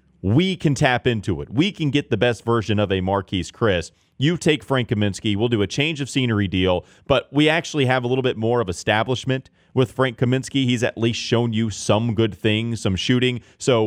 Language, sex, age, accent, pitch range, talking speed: English, male, 30-49, American, 95-130 Hz, 215 wpm